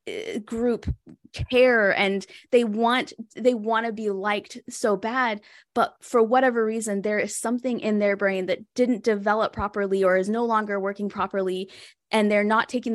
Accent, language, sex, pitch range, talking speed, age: American, English, female, 205-245 Hz, 165 wpm, 10-29